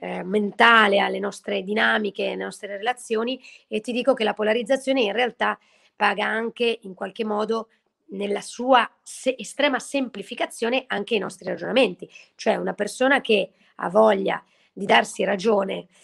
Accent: native